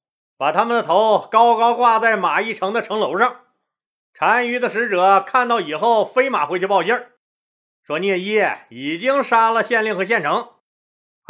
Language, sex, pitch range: Chinese, male, 170-235 Hz